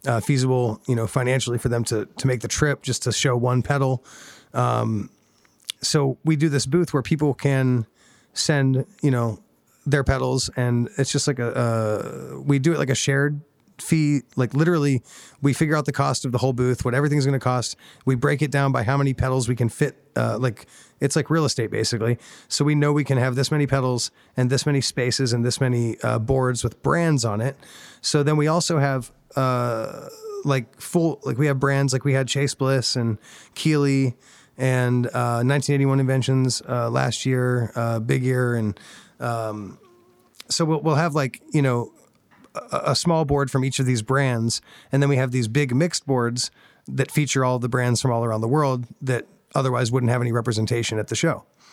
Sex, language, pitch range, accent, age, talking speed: male, English, 120-140 Hz, American, 30-49, 200 wpm